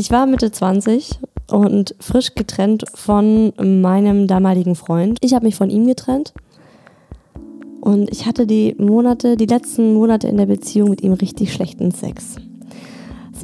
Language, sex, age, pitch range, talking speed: German, female, 20-39, 195-235 Hz, 150 wpm